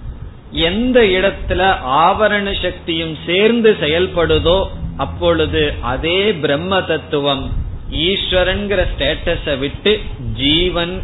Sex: male